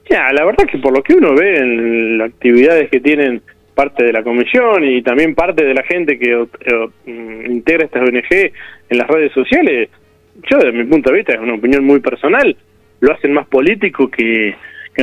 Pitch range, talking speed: 125-155 Hz, 210 wpm